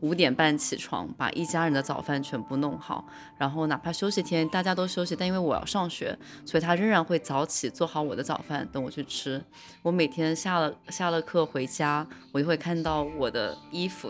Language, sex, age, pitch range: Chinese, female, 20-39, 150-190 Hz